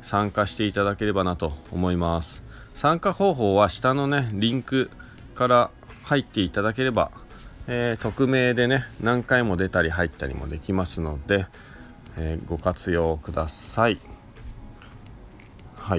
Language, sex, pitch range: Japanese, male, 90-120 Hz